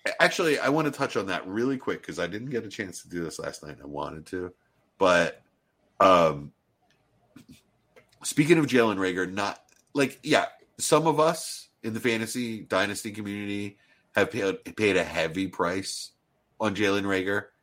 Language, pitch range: English, 90-125 Hz